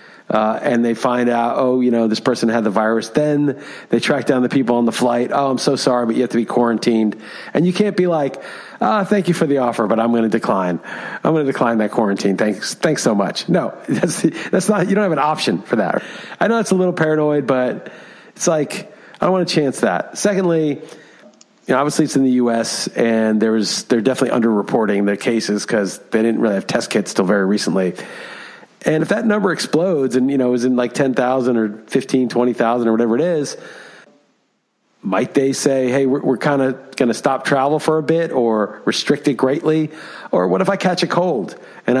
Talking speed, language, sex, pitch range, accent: 225 wpm, English, male, 120-160 Hz, American